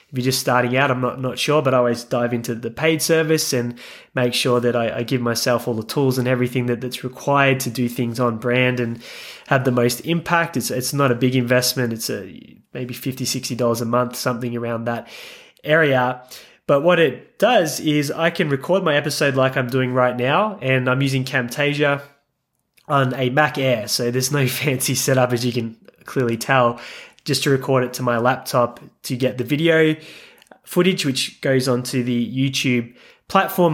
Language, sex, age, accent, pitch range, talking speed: English, male, 20-39, Australian, 125-140 Hz, 195 wpm